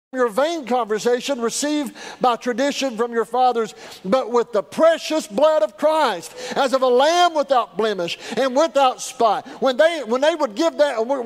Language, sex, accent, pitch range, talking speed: English, male, American, 230-285 Hz, 180 wpm